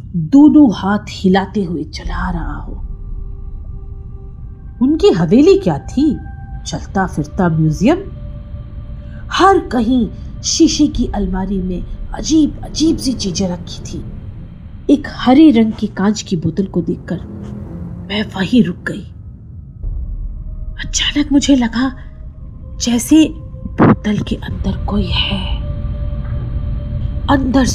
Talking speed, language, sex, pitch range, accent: 105 wpm, Hindi, female, 175-245 Hz, native